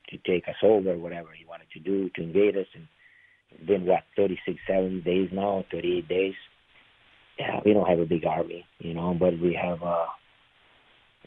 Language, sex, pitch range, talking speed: English, male, 90-105 Hz, 185 wpm